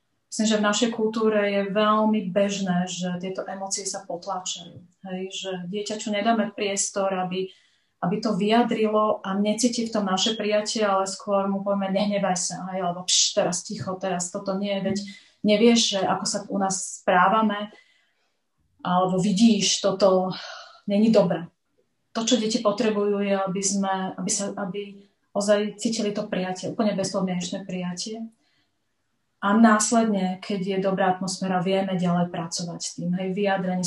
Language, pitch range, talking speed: Slovak, 185-210 Hz, 150 wpm